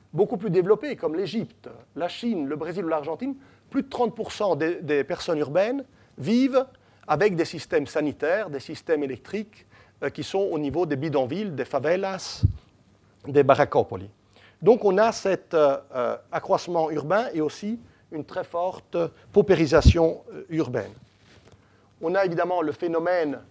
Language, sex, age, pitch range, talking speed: French, male, 40-59, 145-195 Hz, 145 wpm